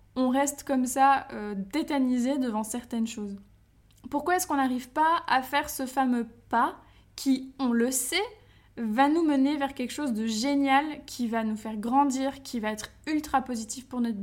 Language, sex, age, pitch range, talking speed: French, female, 20-39, 225-275 Hz, 180 wpm